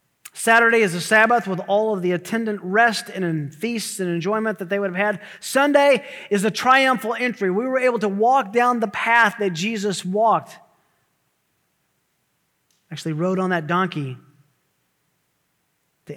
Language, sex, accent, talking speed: English, male, American, 155 wpm